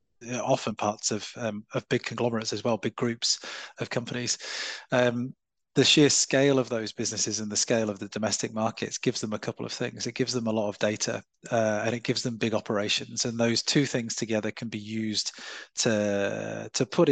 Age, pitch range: 30-49, 105-120 Hz